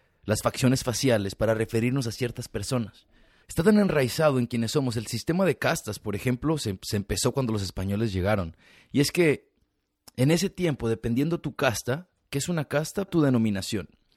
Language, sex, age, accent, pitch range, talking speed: Spanish, male, 30-49, Mexican, 105-140 Hz, 180 wpm